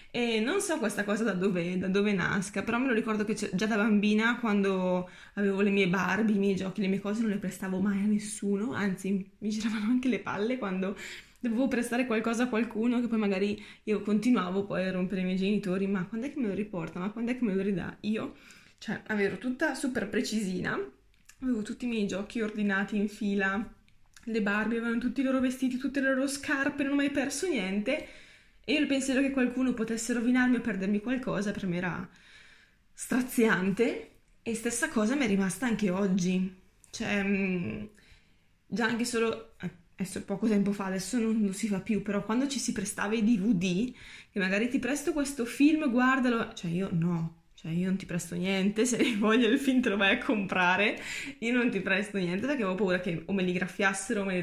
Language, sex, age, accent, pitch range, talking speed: Italian, female, 20-39, native, 195-240 Hz, 205 wpm